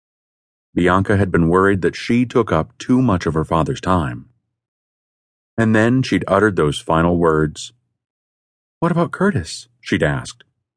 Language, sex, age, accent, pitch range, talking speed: English, male, 40-59, American, 85-125 Hz, 145 wpm